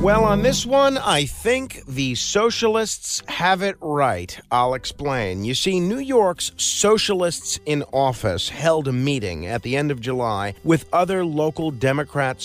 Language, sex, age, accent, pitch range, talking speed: English, male, 50-69, American, 125-175 Hz, 155 wpm